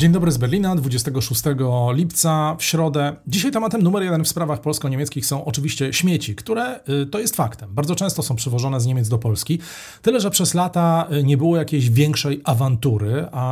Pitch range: 125-160 Hz